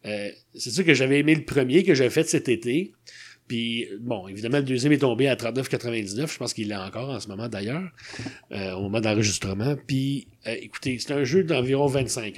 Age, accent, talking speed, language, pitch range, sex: 30-49, Canadian, 210 wpm, French, 115-145 Hz, male